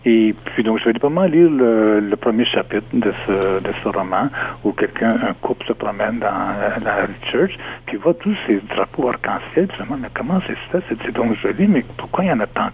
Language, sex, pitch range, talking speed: French, male, 105-125 Hz, 230 wpm